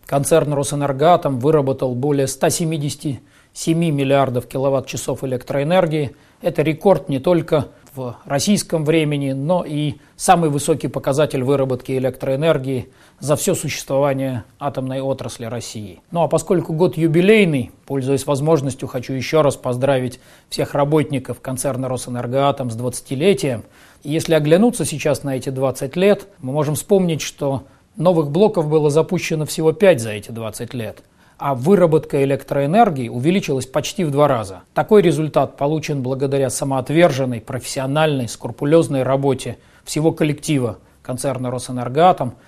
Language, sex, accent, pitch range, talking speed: Russian, male, native, 130-160 Hz, 120 wpm